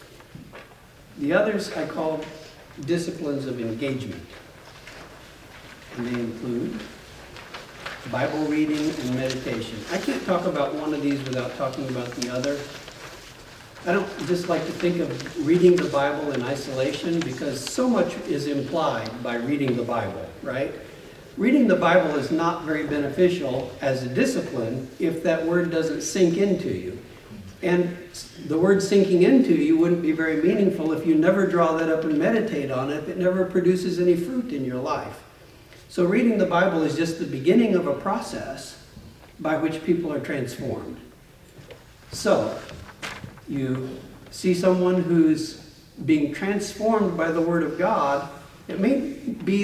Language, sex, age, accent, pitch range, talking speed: English, male, 60-79, American, 140-180 Hz, 150 wpm